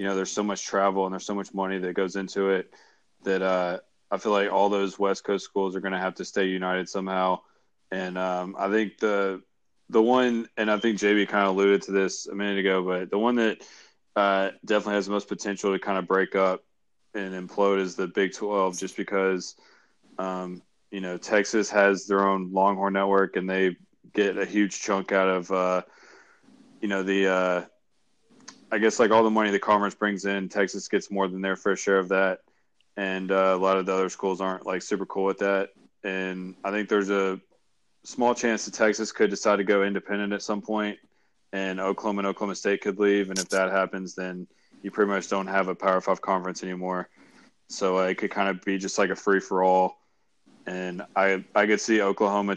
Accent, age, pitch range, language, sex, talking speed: American, 20-39, 95-100 Hz, English, male, 215 wpm